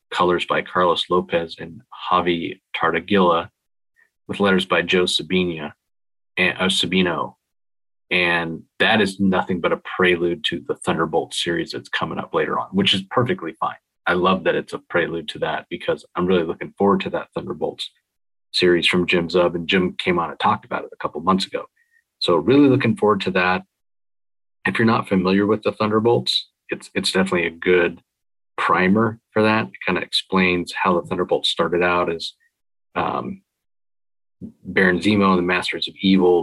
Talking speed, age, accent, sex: 175 wpm, 40-59, American, male